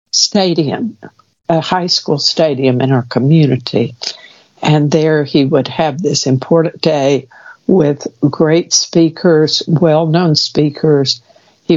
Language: English